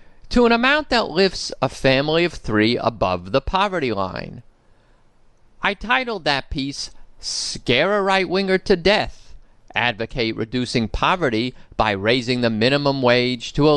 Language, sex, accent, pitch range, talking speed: English, male, American, 115-160 Hz, 140 wpm